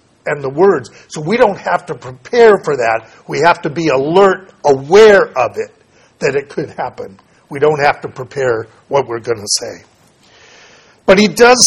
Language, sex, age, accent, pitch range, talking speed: English, male, 50-69, American, 140-185 Hz, 185 wpm